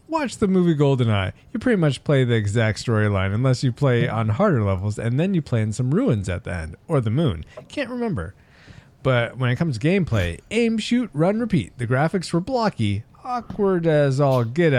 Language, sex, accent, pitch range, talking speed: English, male, American, 110-170 Hz, 205 wpm